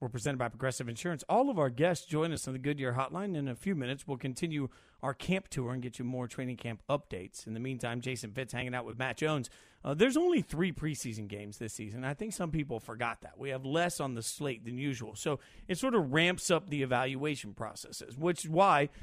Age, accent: 40-59, American